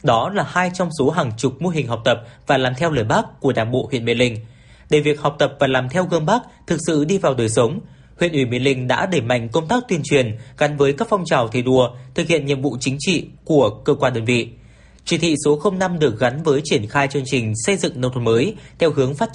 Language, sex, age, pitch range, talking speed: Vietnamese, male, 20-39, 125-160 Hz, 265 wpm